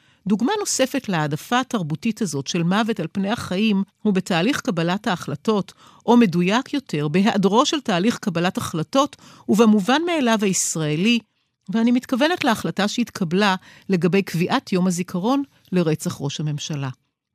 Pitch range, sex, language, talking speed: 175-250 Hz, female, Hebrew, 120 wpm